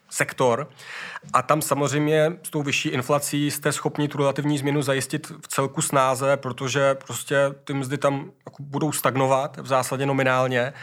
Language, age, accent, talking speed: Czech, 30-49, native, 150 wpm